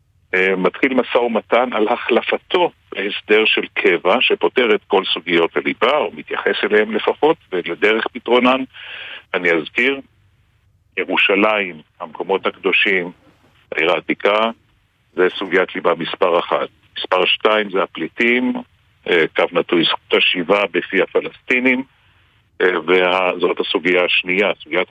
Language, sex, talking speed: Hebrew, male, 105 wpm